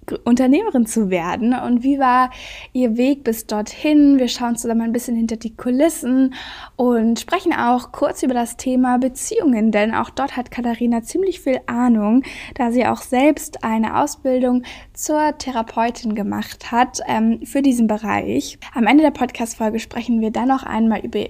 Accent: German